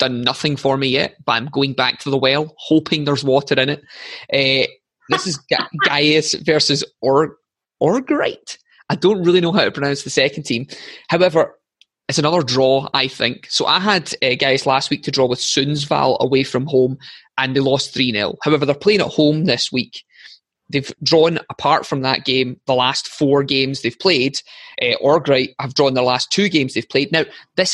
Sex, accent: male, British